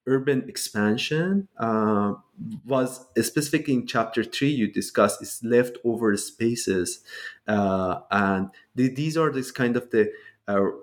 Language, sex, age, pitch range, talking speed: English, male, 30-49, 105-140 Hz, 130 wpm